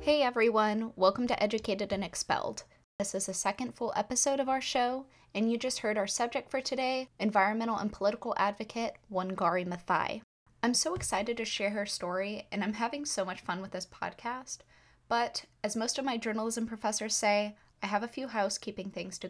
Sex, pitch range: female, 185-240 Hz